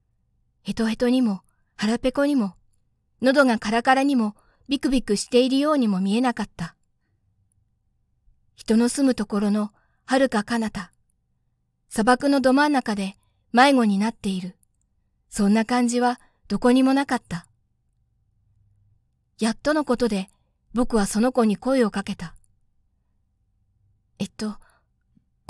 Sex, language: female, Japanese